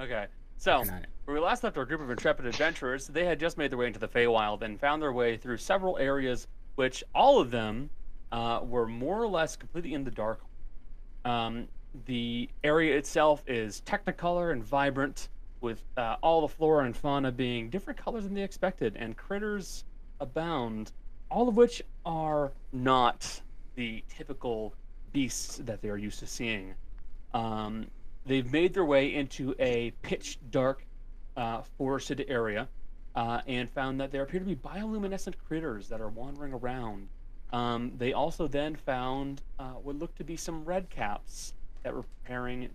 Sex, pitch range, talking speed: male, 115-150 Hz, 165 wpm